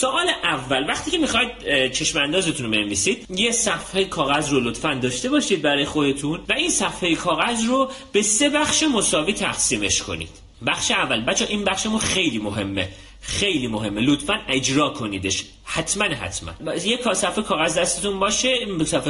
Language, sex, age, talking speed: Persian, male, 30-49, 155 wpm